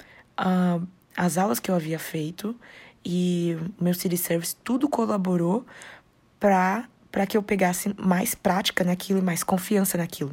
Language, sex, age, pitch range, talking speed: Portuguese, female, 20-39, 170-200 Hz, 145 wpm